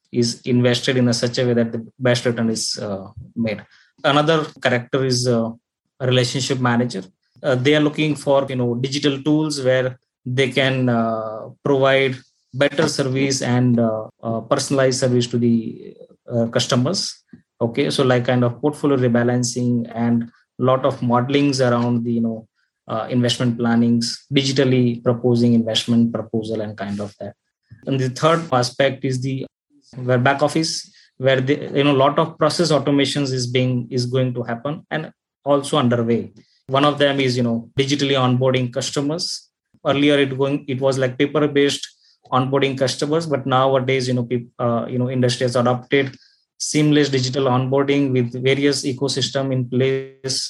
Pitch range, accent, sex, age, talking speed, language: 120-140 Hz, Indian, male, 20-39, 160 wpm, English